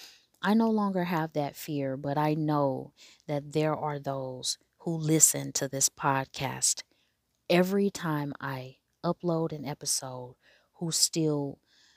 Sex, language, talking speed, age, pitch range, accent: female, English, 130 wpm, 30-49, 140-180 Hz, American